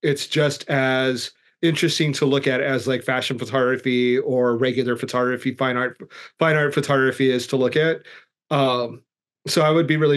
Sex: male